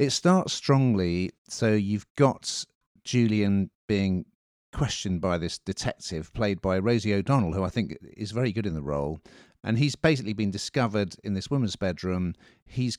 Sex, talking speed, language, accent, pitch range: male, 160 wpm, English, British, 85-110 Hz